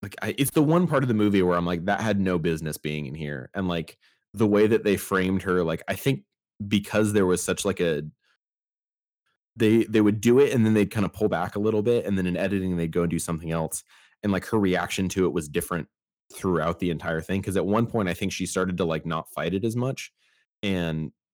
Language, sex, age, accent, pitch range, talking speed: English, male, 30-49, American, 80-105 Hz, 245 wpm